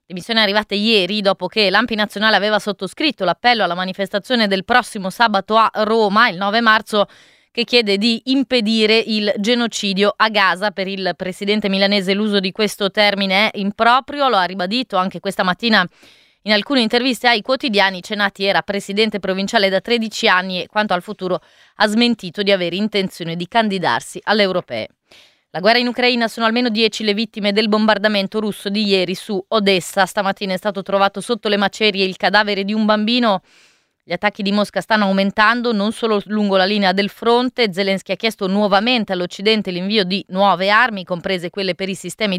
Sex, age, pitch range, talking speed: female, 20-39, 190-220 Hz, 175 wpm